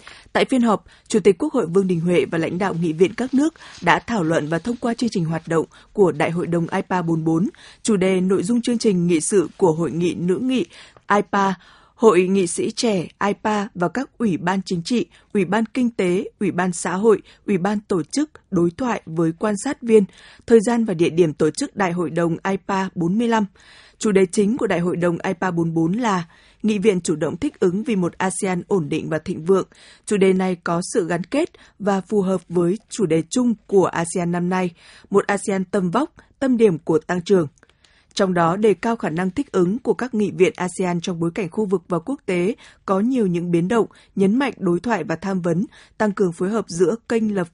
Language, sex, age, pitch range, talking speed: Vietnamese, female, 20-39, 175-220 Hz, 220 wpm